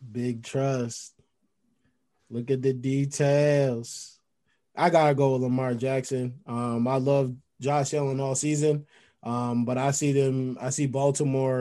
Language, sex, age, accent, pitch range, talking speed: English, male, 20-39, American, 120-145 Hz, 140 wpm